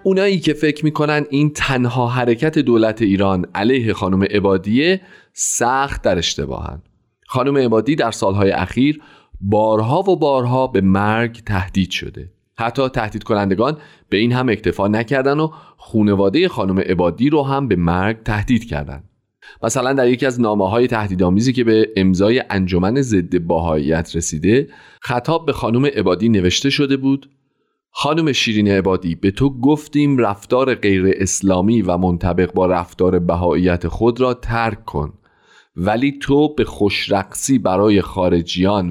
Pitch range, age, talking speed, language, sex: 95-135 Hz, 30-49, 140 wpm, Persian, male